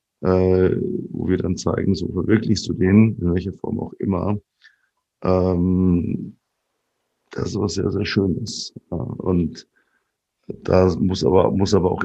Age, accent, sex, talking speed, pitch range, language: 50-69, German, male, 155 wpm, 90-100 Hz, German